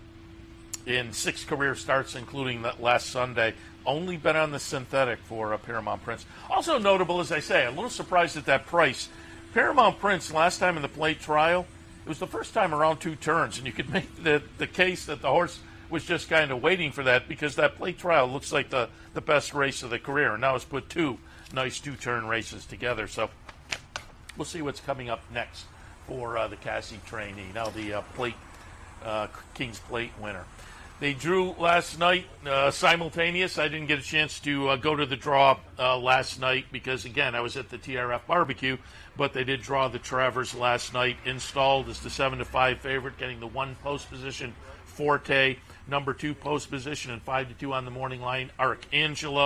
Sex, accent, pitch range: male, American, 120-150 Hz